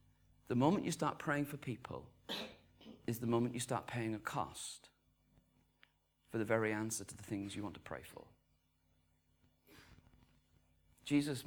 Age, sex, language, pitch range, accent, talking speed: 40-59, male, English, 105-150 Hz, British, 145 wpm